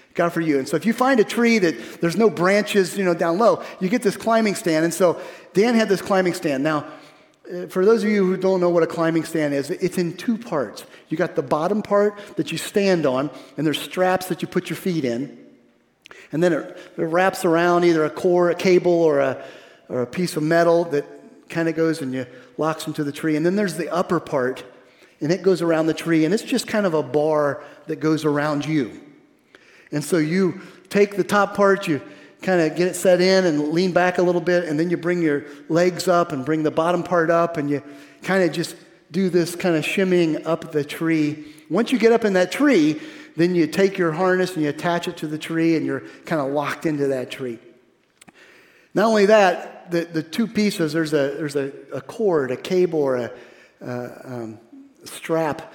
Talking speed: 225 wpm